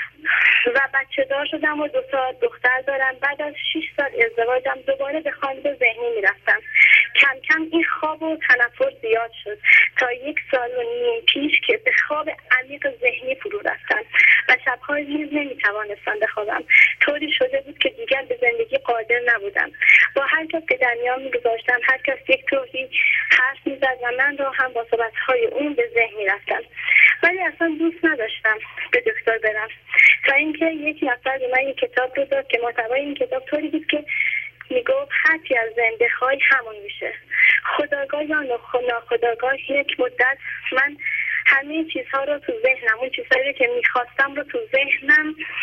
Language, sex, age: Persian, female, 20-39